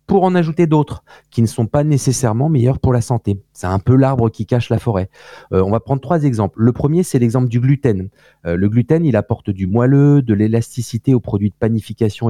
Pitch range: 100-135 Hz